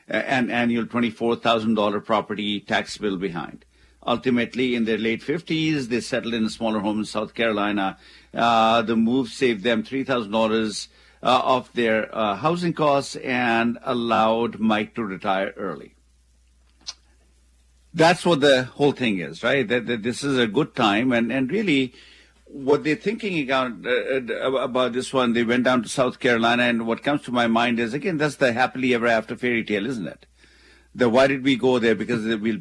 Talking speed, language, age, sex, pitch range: 180 wpm, English, 50-69, male, 110-135 Hz